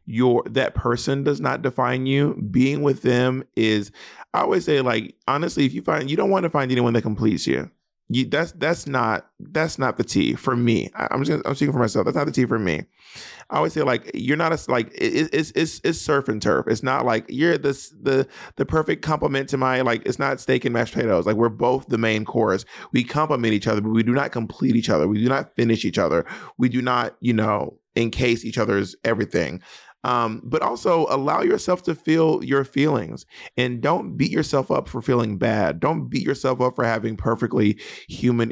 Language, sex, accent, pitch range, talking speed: English, male, American, 115-135 Hz, 225 wpm